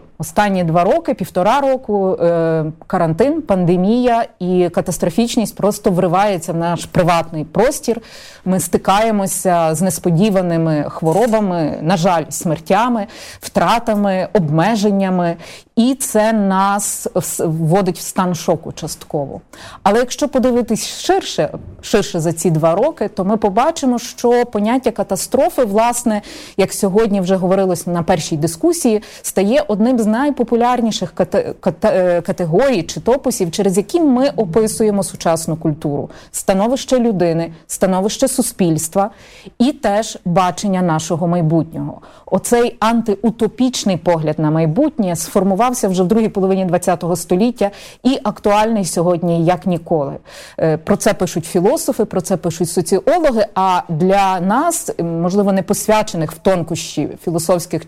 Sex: female